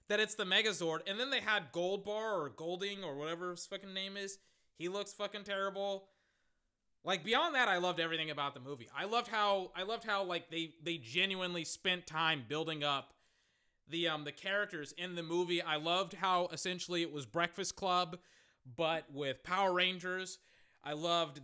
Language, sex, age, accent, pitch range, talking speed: English, male, 20-39, American, 155-200 Hz, 180 wpm